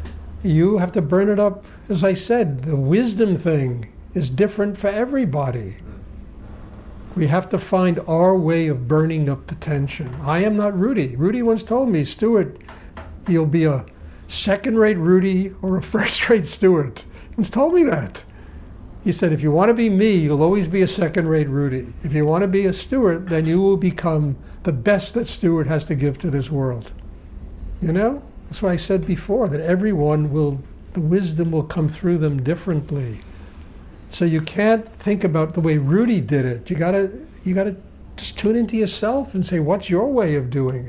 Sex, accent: male, American